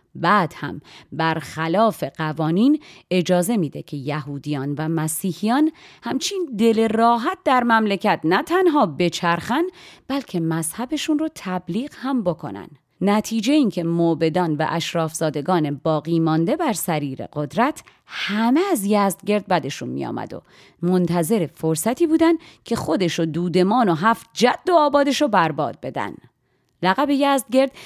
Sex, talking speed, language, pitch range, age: female, 120 wpm, Persian, 155-230 Hz, 30-49